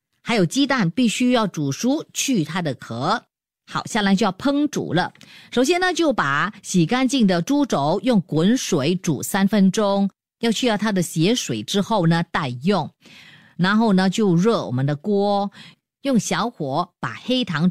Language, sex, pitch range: Chinese, female, 170-235 Hz